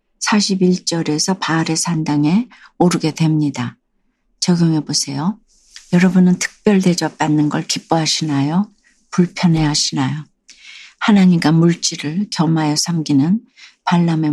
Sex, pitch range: female, 155-190 Hz